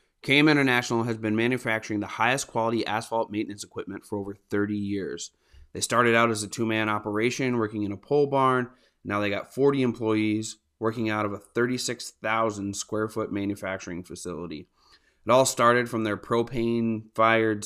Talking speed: 165 wpm